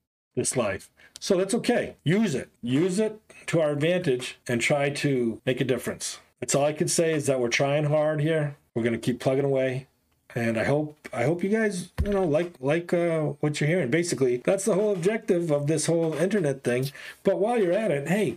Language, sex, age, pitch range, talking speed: English, male, 40-59, 125-175 Hz, 210 wpm